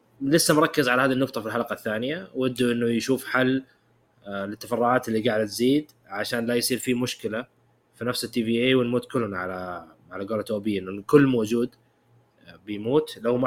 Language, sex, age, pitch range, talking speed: Arabic, male, 20-39, 115-145 Hz, 170 wpm